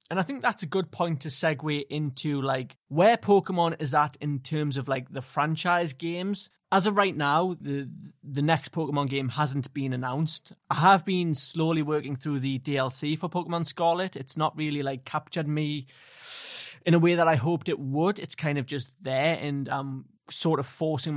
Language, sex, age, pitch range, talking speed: English, male, 20-39, 140-175 Hz, 195 wpm